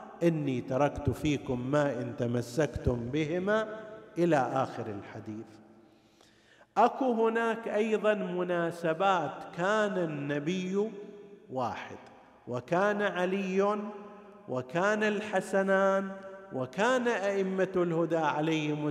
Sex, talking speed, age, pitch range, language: male, 80 wpm, 50-69, 135-185 Hz, Arabic